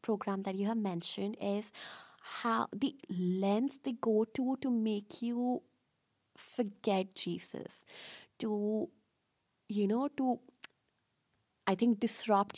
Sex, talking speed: female, 115 wpm